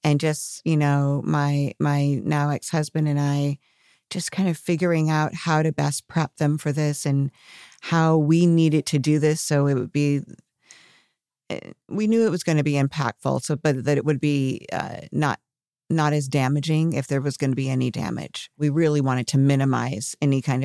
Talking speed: 195 wpm